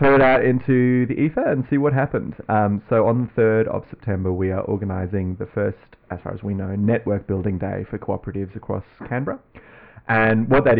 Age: 30-49